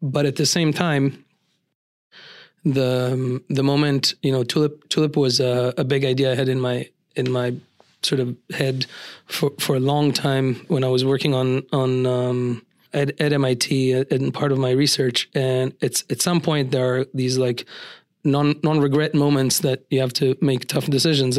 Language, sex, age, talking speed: English, male, 30-49, 195 wpm